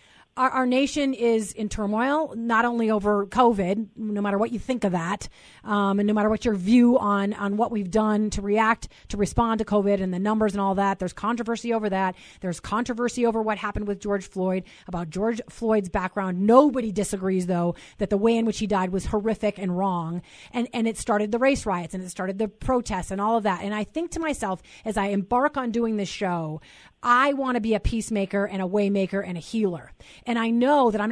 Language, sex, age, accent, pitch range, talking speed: English, female, 30-49, American, 195-235 Hz, 225 wpm